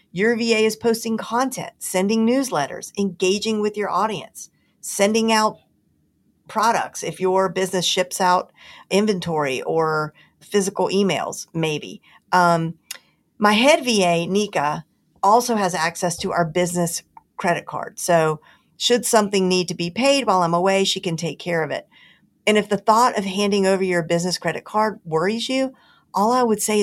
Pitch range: 165-210 Hz